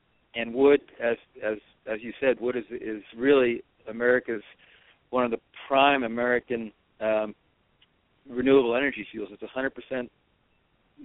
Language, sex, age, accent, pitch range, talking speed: English, male, 50-69, American, 110-125 Hz, 125 wpm